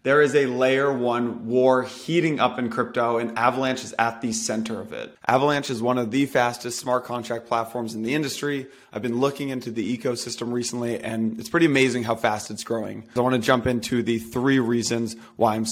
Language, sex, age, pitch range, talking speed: English, male, 20-39, 115-125 Hz, 210 wpm